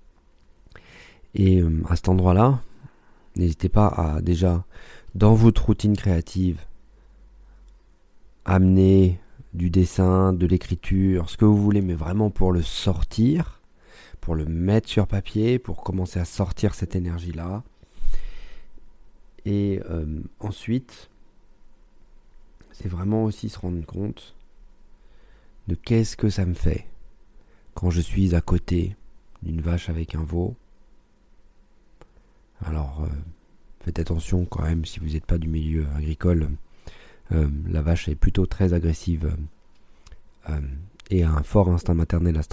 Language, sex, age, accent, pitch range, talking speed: French, male, 40-59, French, 80-100 Hz, 130 wpm